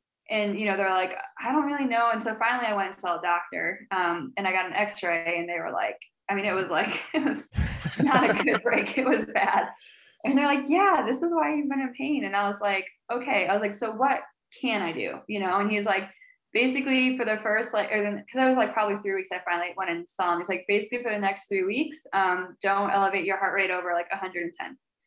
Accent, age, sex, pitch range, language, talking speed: American, 10-29, female, 190-240 Hz, English, 260 wpm